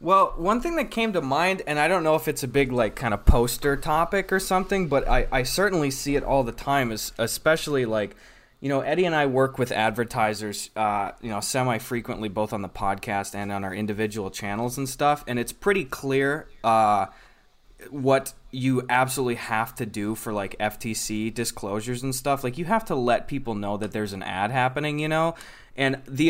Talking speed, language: 210 wpm, English